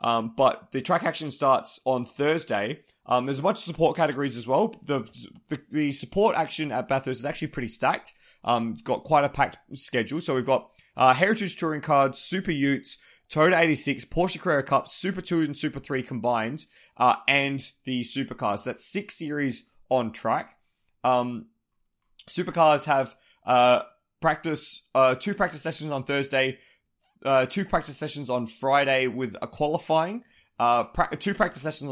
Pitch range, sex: 125-150 Hz, male